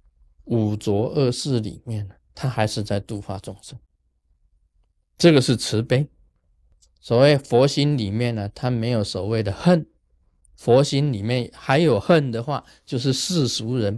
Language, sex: Chinese, male